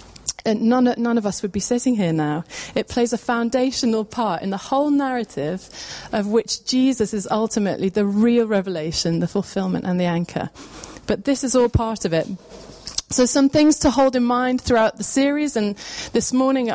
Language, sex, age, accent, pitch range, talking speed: English, female, 30-49, British, 200-255 Hz, 190 wpm